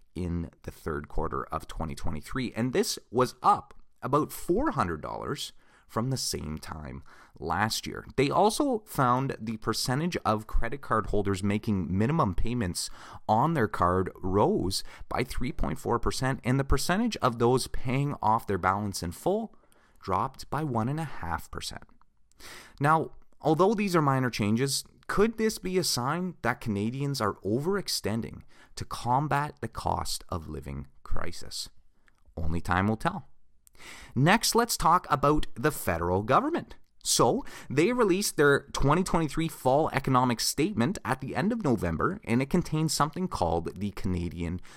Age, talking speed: 30-49, 145 wpm